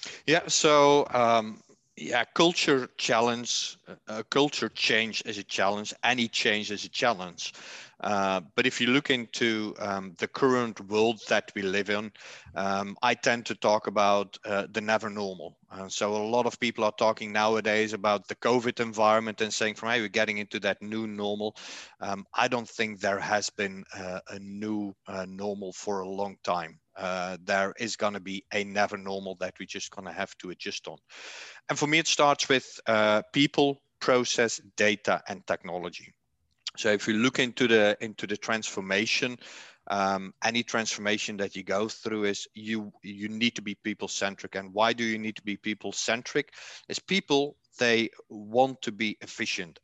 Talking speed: 180 wpm